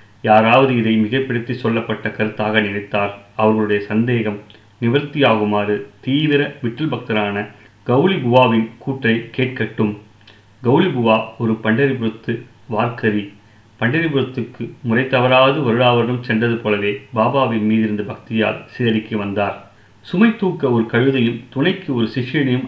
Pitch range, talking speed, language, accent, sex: 110-130 Hz, 105 wpm, Tamil, native, male